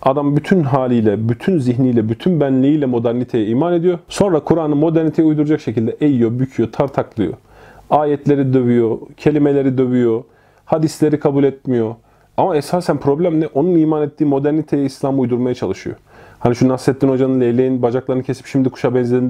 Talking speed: 145 wpm